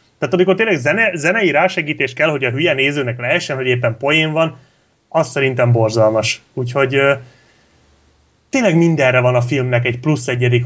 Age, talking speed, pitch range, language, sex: 30-49, 165 wpm, 120-150 Hz, Hungarian, male